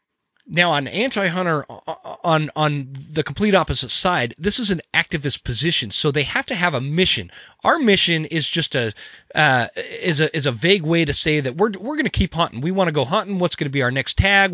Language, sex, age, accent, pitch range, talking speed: English, male, 30-49, American, 140-185 Hz, 225 wpm